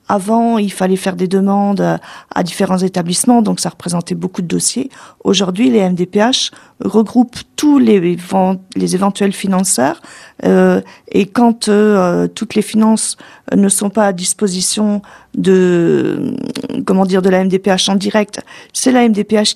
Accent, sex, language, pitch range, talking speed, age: French, female, French, 185-215 Hz, 135 wpm, 50-69